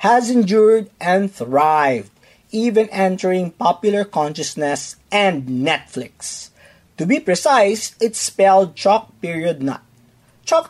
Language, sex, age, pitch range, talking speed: English, male, 40-59, 150-210 Hz, 105 wpm